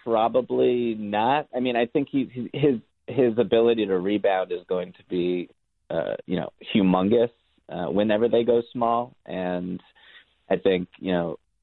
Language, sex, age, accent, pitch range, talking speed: English, male, 30-49, American, 95-115 Hz, 155 wpm